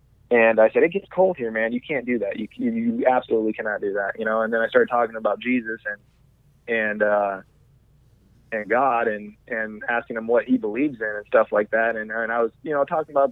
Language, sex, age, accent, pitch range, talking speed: English, male, 20-39, American, 110-135 Hz, 235 wpm